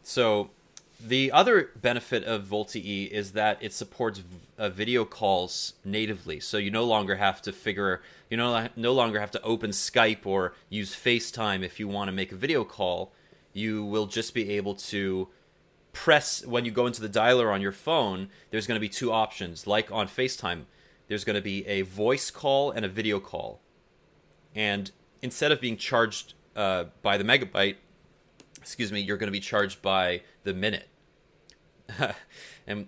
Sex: male